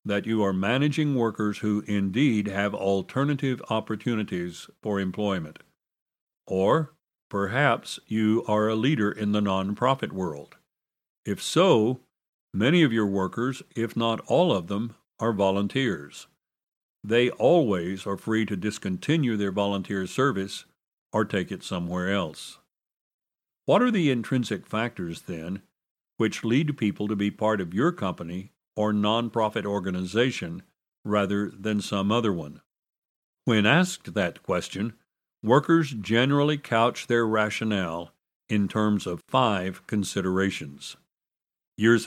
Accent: American